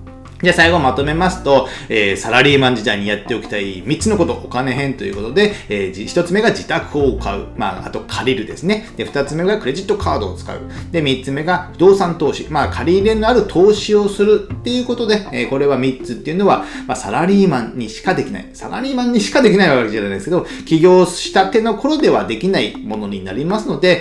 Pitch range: 125-210 Hz